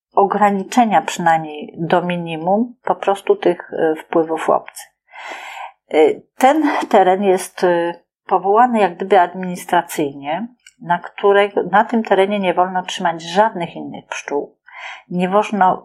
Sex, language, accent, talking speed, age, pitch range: female, Polish, native, 110 wpm, 40-59, 160-215 Hz